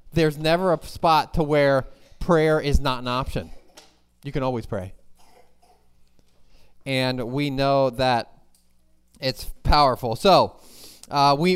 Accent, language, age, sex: American, English, 30-49, male